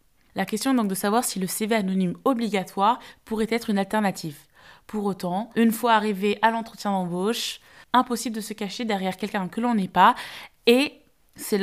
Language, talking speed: French, 180 wpm